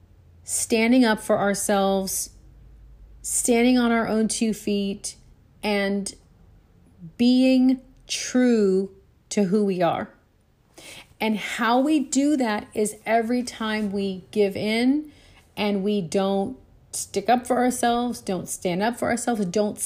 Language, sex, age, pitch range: English, female, 40-59, 195-265 Hz